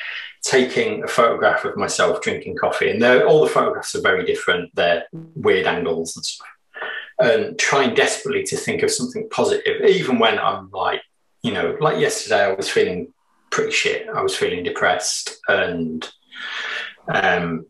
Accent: British